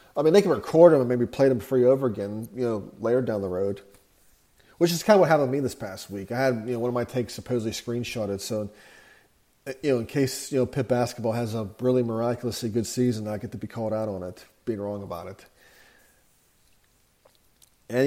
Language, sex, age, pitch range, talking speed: English, male, 40-59, 115-140 Hz, 230 wpm